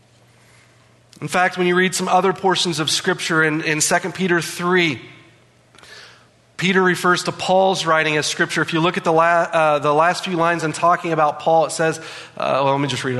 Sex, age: male, 30-49